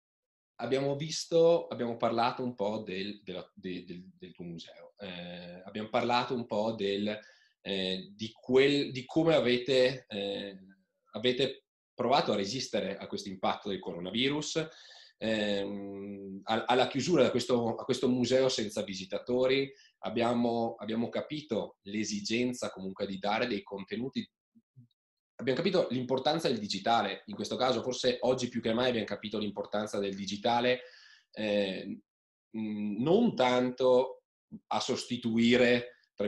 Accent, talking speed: native, 125 wpm